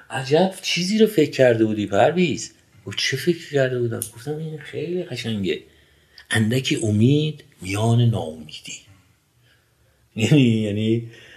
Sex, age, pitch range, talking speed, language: male, 50-69, 115-150 Hz, 110 wpm, Persian